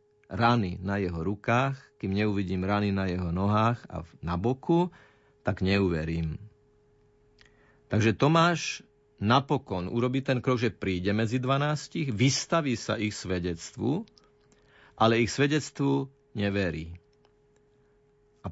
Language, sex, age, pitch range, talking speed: Slovak, male, 50-69, 100-140 Hz, 110 wpm